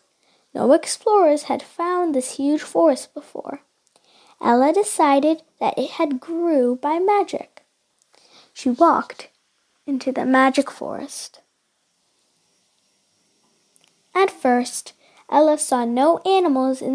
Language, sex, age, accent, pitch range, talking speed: English, female, 10-29, American, 260-315 Hz, 105 wpm